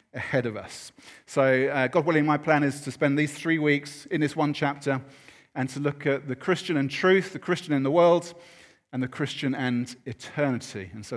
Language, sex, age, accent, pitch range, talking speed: English, male, 40-59, British, 130-165 Hz, 210 wpm